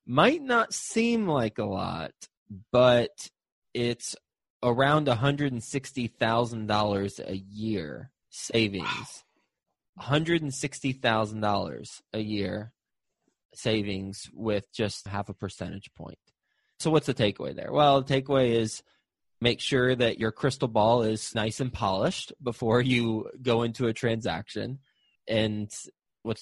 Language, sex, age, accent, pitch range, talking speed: English, male, 20-39, American, 100-125 Hz, 115 wpm